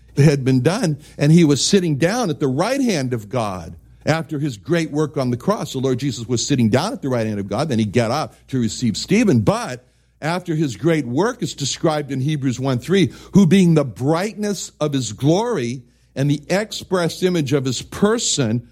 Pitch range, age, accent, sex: 130-180 Hz, 60-79, American, male